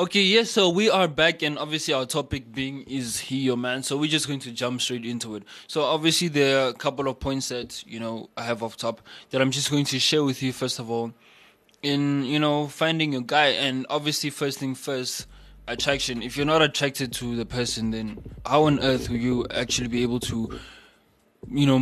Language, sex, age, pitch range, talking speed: English, male, 20-39, 125-150 Hz, 225 wpm